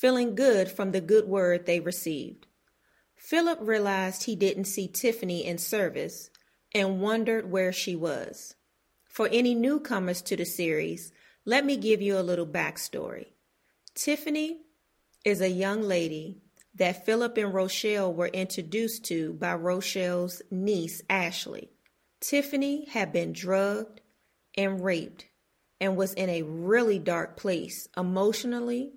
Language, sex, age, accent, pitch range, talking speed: English, female, 30-49, American, 180-225 Hz, 135 wpm